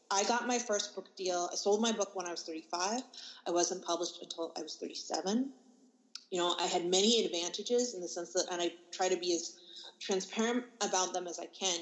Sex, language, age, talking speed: female, English, 20-39, 220 wpm